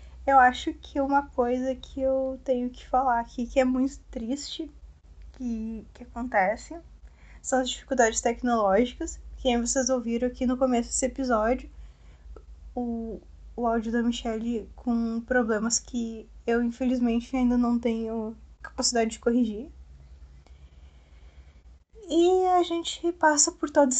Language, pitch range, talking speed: Portuguese, 215-260 Hz, 130 wpm